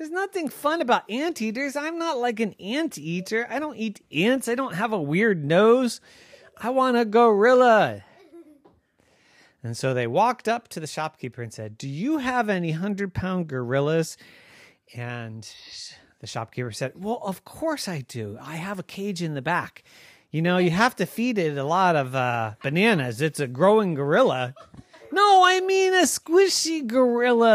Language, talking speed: English, 175 wpm